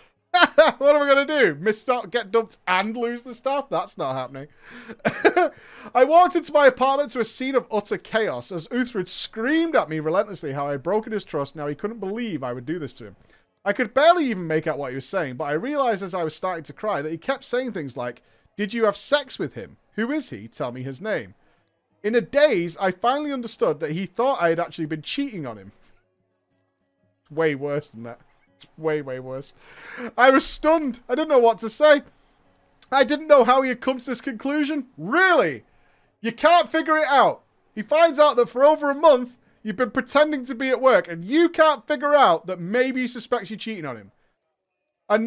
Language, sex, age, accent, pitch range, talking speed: English, male, 30-49, British, 165-275 Hz, 215 wpm